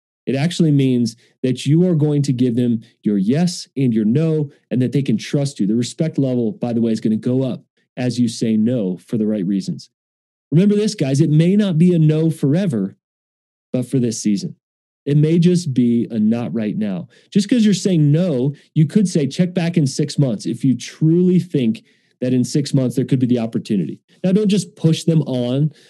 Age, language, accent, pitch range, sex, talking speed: 40-59, English, American, 130-165 Hz, male, 220 wpm